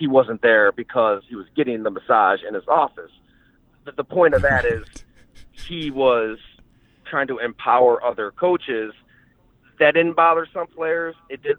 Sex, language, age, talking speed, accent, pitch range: male, English, 40-59, 165 wpm, American, 125-160 Hz